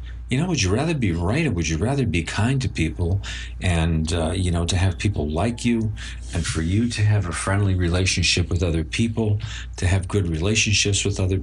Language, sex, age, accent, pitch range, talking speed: English, male, 50-69, American, 80-110 Hz, 215 wpm